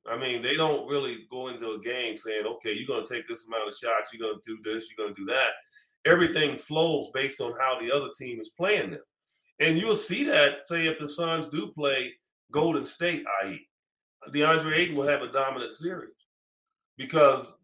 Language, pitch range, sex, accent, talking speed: English, 130-175 Hz, male, American, 210 wpm